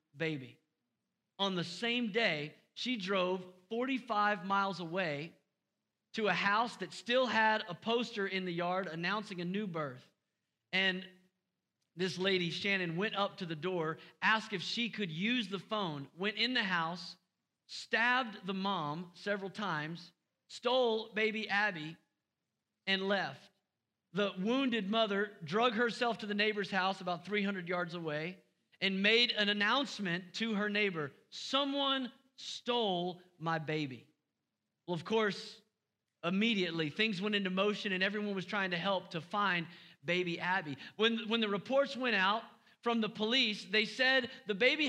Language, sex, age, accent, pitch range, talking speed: English, male, 40-59, American, 180-230 Hz, 145 wpm